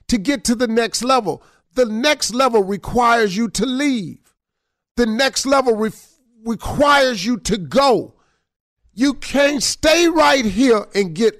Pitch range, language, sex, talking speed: 175-250 Hz, English, male, 140 wpm